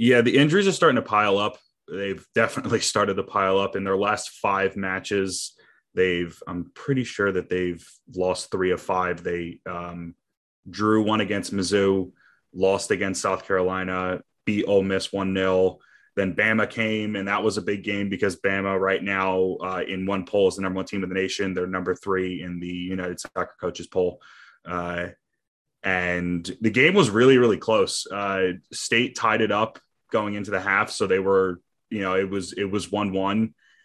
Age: 20-39